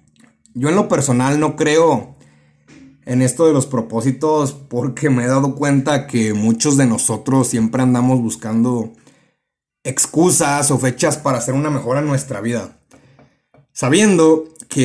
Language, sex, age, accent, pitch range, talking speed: Spanish, male, 30-49, Mexican, 125-150 Hz, 140 wpm